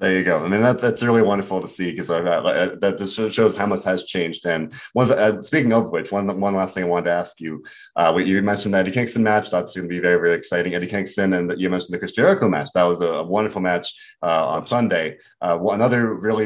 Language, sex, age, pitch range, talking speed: English, male, 30-49, 95-115 Hz, 265 wpm